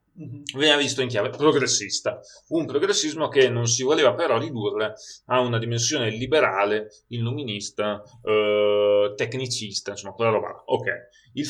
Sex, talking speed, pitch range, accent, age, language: male, 130 wpm, 115-145 Hz, native, 30-49, Italian